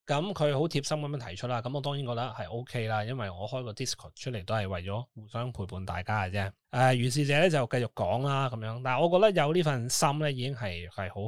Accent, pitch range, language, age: native, 105-145 Hz, Chinese, 20-39